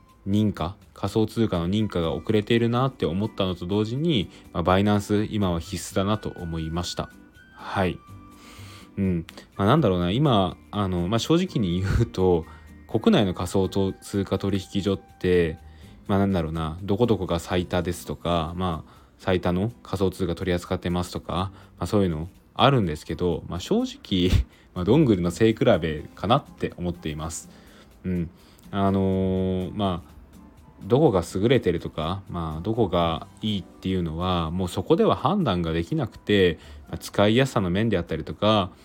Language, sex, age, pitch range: Japanese, male, 20-39, 85-100 Hz